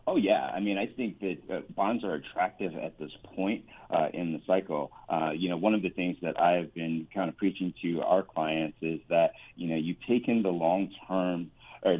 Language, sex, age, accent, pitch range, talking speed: English, male, 40-59, American, 85-100 Hz, 220 wpm